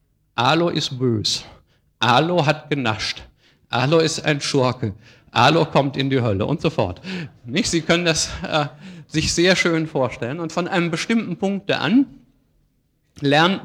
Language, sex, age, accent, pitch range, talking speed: German, male, 50-69, German, 130-160 Hz, 150 wpm